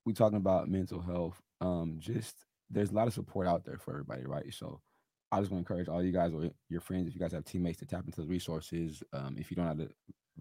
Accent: American